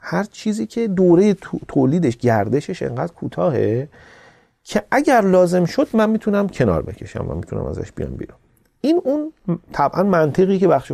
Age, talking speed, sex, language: 40-59, 150 wpm, male, Persian